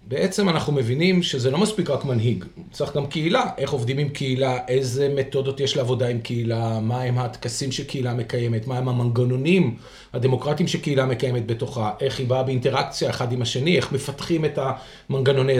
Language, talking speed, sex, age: Hebrew, 170 wpm, male, 40-59